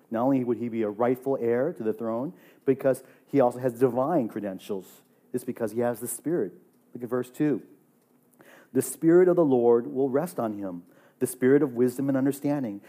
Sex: male